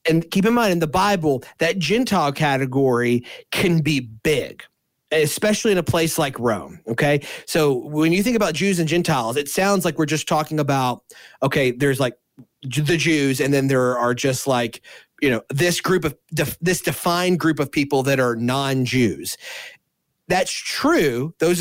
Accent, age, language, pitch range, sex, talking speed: American, 30-49, English, 135-175 Hz, male, 175 wpm